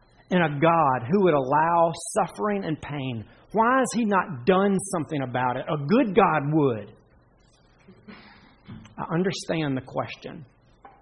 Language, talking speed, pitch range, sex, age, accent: English, 135 wpm, 120-165 Hz, male, 40-59, American